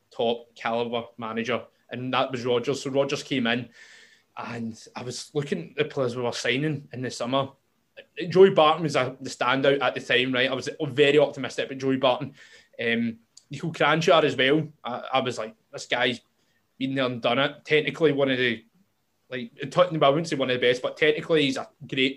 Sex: male